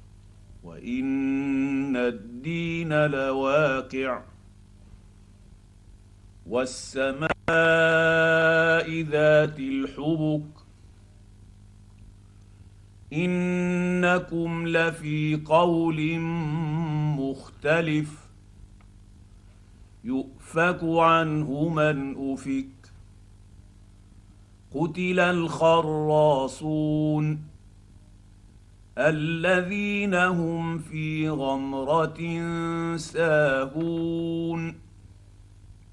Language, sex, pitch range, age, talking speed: Arabic, male, 100-165 Hz, 50-69, 35 wpm